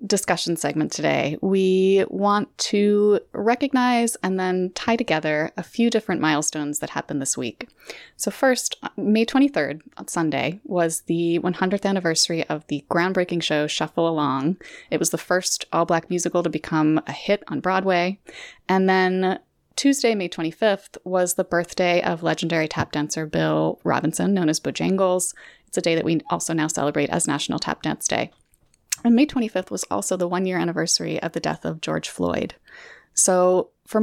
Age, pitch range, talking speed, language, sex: 20-39, 165-205 Hz, 165 wpm, English, female